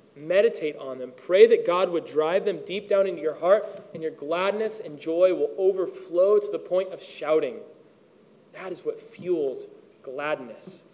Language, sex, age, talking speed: English, male, 30-49, 170 wpm